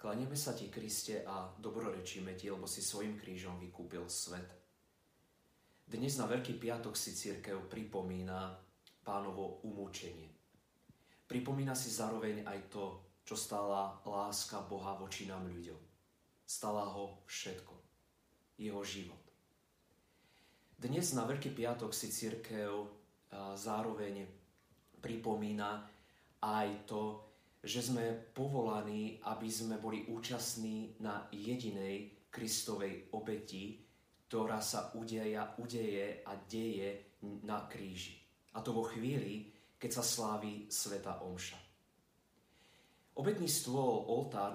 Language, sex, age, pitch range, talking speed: Slovak, male, 30-49, 100-110 Hz, 110 wpm